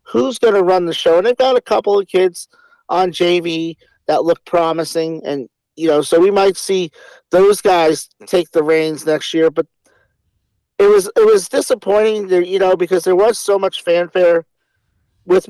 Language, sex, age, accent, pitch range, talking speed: English, male, 50-69, American, 165-200 Hz, 185 wpm